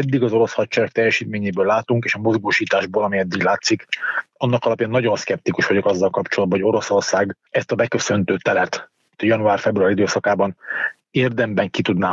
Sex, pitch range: male, 110-130 Hz